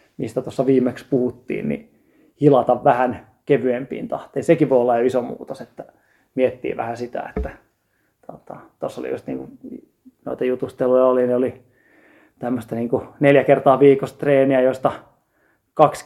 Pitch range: 125-140 Hz